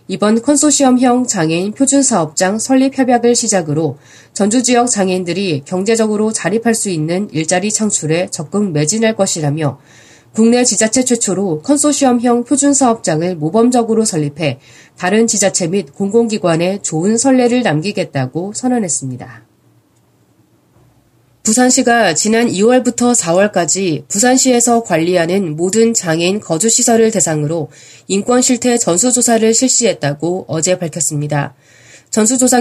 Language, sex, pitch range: Korean, female, 165-240 Hz